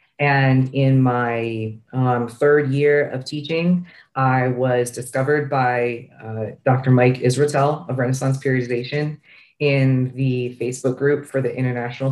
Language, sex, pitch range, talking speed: English, female, 125-145 Hz, 130 wpm